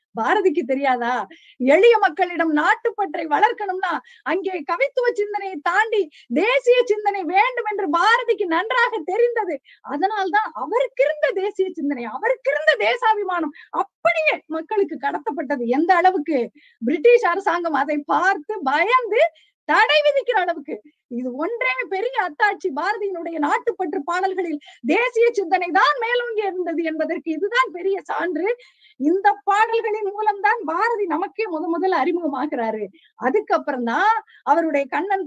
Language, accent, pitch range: Tamil, native, 300-420 Hz